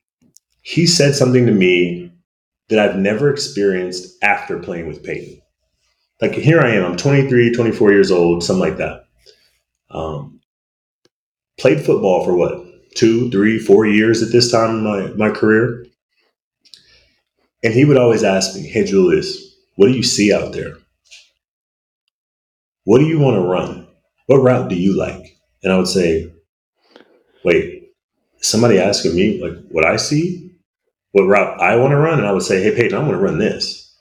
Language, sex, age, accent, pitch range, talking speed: English, male, 30-49, American, 105-160 Hz, 170 wpm